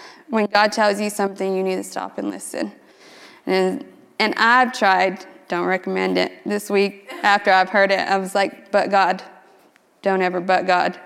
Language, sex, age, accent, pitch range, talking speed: English, female, 20-39, American, 185-240 Hz, 180 wpm